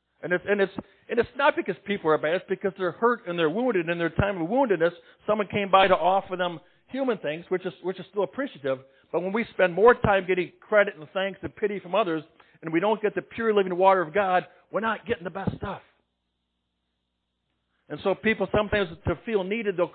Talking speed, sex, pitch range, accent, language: 230 wpm, male, 130-195 Hz, American, English